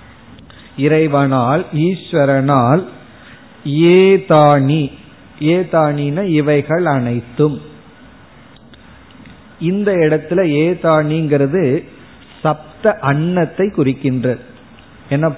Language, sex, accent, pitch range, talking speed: Tamil, male, native, 140-180 Hz, 40 wpm